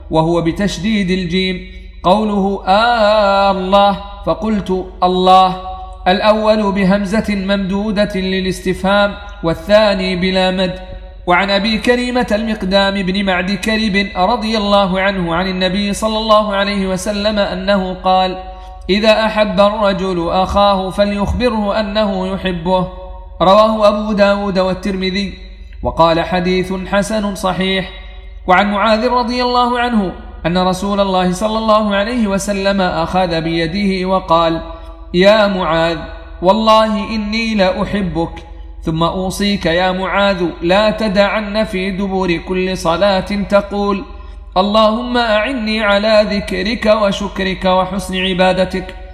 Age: 40-59